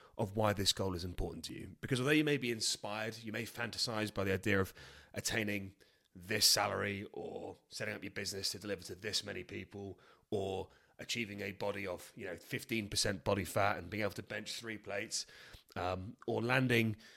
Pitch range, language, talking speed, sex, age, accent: 100-125 Hz, English, 190 wpm, male, 30-49, British